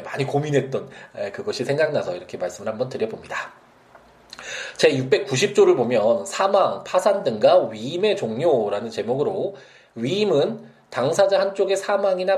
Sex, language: male, Korean